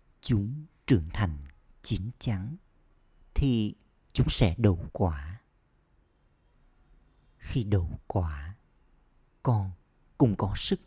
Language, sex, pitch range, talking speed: Vietnamese, male, 85-120 Hz, 95 wpm